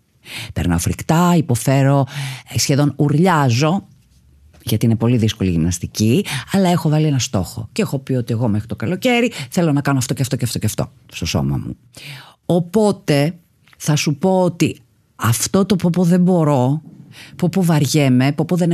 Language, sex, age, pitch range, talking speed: Greek, female, 30-49, 125-175 Hz, 165 wpm